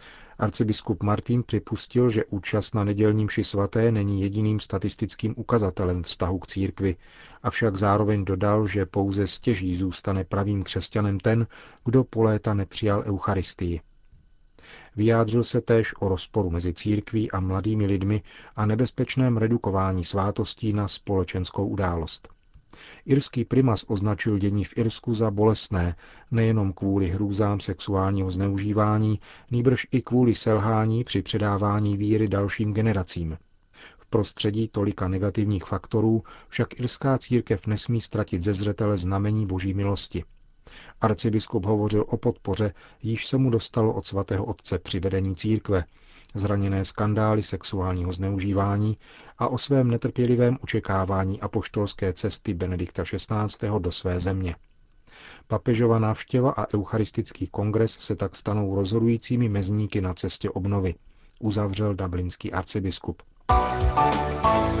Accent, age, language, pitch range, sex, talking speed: native, 40-59, Czech, 95-110 Hz, male, 120 wpm